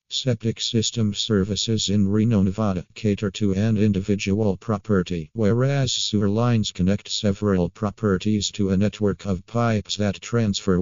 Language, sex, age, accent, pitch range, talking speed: English, male, 50-69, American, 95-110 Hz, 135 wpm